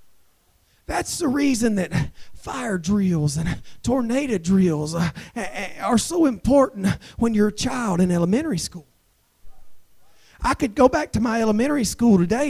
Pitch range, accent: 225-305 Hz, American